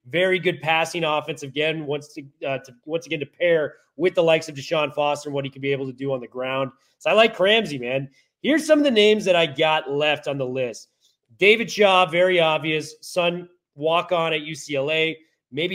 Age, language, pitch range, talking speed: 30-49, English, 145-180 Hz, 205 wpm